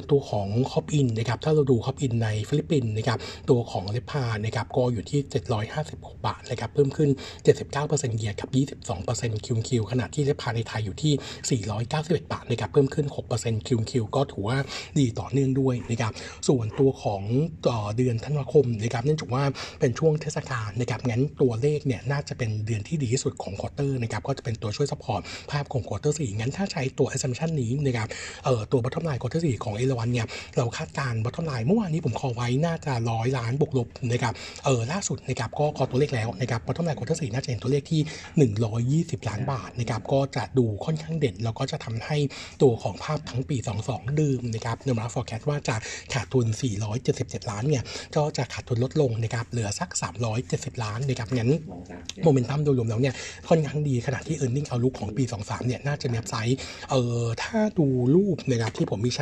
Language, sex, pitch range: Thai, male, 115-145 Hz